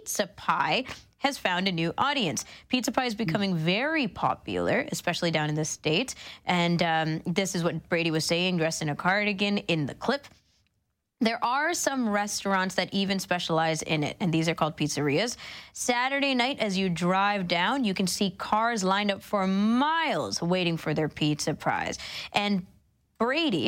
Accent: American